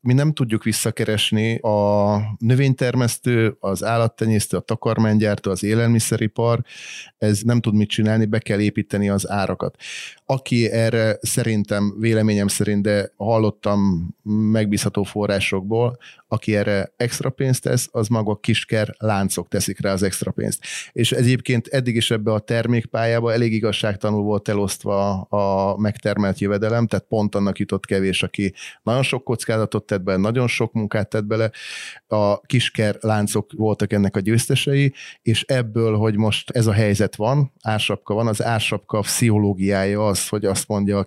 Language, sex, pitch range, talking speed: Hungarian, male, 105-115 Hz, 150 wpm